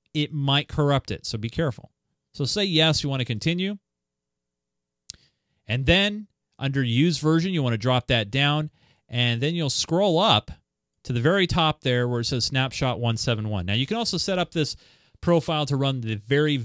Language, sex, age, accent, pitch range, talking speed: English, male, 30-49, American, 110-150 Hz, 180 wpm